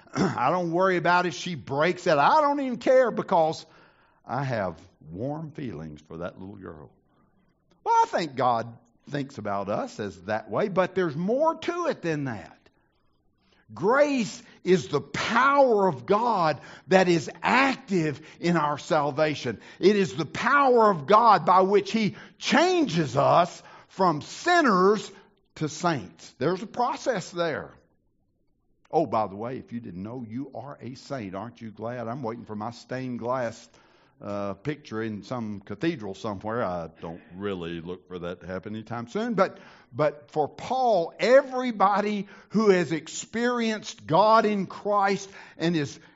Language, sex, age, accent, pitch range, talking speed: English, male, 60-79, American, 125-210 Hz, 155 wpm